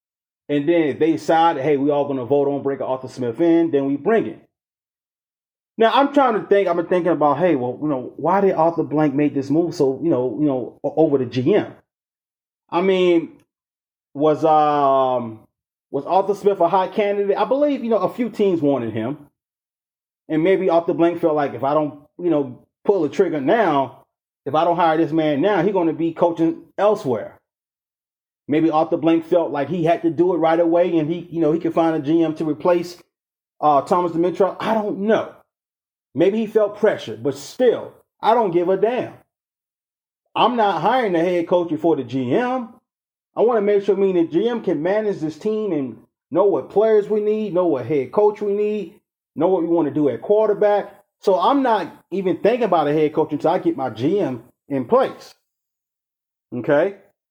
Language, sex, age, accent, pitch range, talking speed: English, male, 30-49, American, 150-200 Hz, 200 wpm